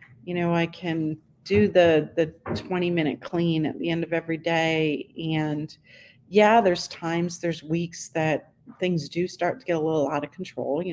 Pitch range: 155-185 Hz